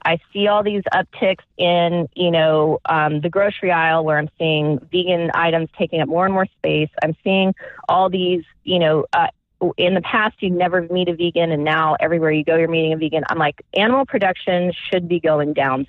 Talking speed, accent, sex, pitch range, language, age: 210 wpm, American, female, 155-190 Hz, English, 30-49